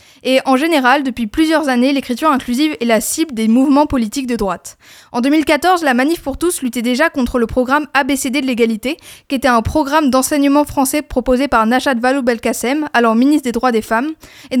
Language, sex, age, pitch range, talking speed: French, female, 20-39, 245-295 Hz, 195 wpm